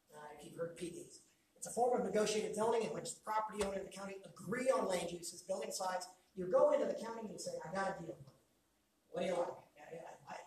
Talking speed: 230 wpm